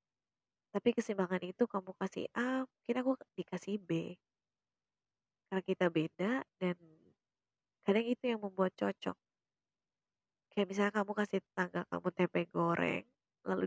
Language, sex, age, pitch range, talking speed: Indonesian, female, 20-39, 175-220 Hz, 125 wpm